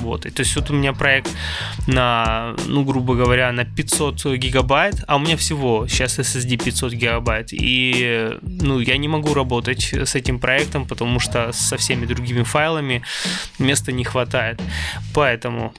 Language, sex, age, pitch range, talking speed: Russian, male, 20-39, 115-135 Hz, 150 wpm